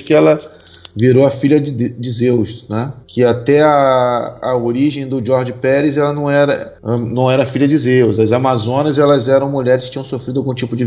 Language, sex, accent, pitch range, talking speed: Portuguese, male, Brazilian, 120-140 Hz, 190 wpm